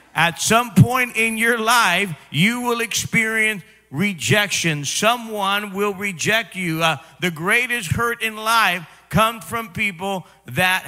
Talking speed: 130 wpm